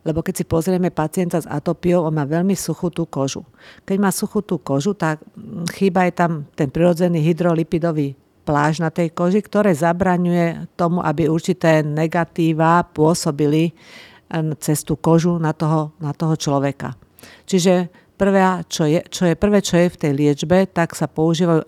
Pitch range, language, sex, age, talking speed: 155-180 Hz, Slovak, female, 50-69, 160 wpm